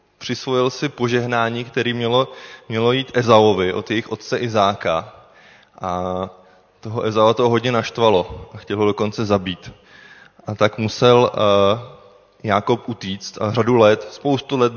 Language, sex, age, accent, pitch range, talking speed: Czech, male, 20-39, native, 105-130 Hz, 140 wpm